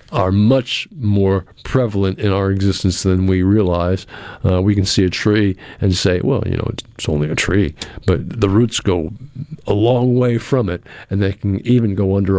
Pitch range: 95-115 Hz